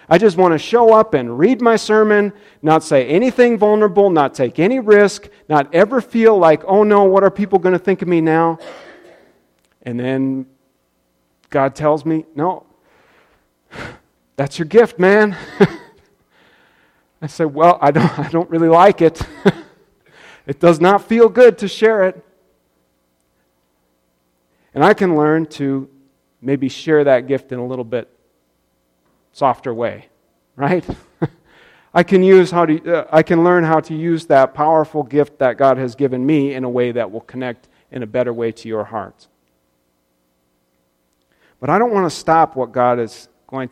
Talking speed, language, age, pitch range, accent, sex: 165 wpm, English, 40-59, 115-170 Hz, American, male